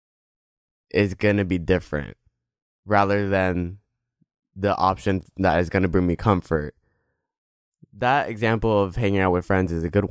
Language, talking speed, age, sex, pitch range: English, 155 wpm, 20-39, male, 90-115 Hz